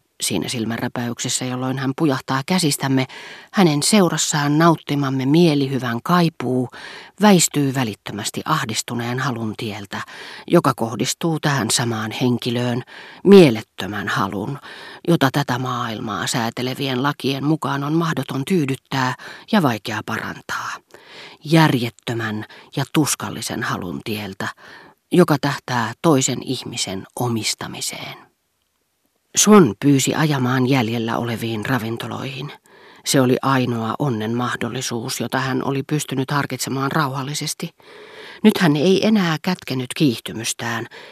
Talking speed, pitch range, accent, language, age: 100 wpm, 120-150 Hz, native, Finnish, 40-59